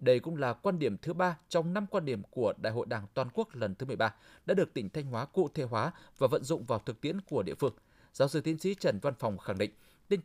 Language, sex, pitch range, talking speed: Vietnamese, male, 120-180 Hz, 275 wpm